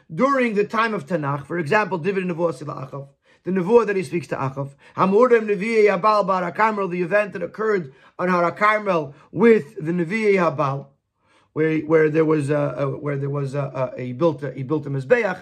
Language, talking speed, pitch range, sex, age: English, 165 wpm, 155-210 Hz, male, 40-59